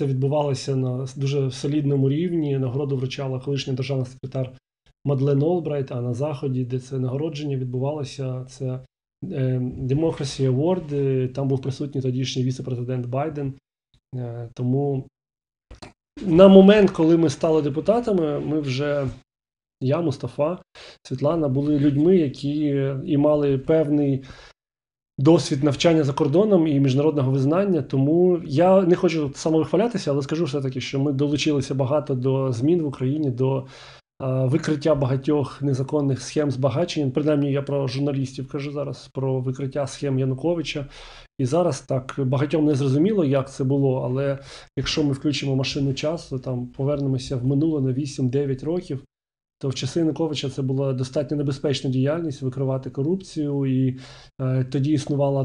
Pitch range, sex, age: 135-150 Hz, male, 20-39